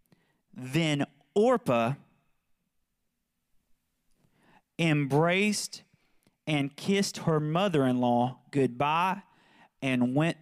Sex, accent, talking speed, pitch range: male, American, 60 wpm, 125-175 Hz